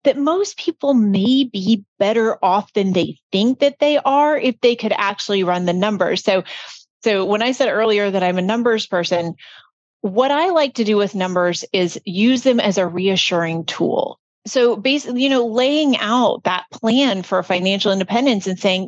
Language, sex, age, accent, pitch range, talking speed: English, female, 30-49, American, 200-280 Hz, 185 wpm